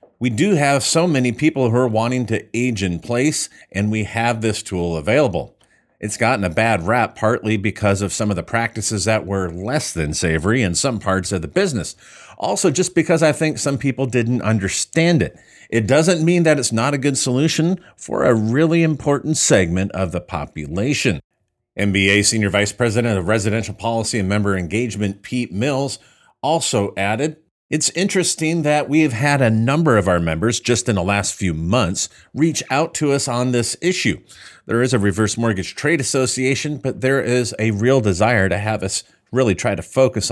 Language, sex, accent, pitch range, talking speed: English, male, American, 100-135 Hz, 190 wpm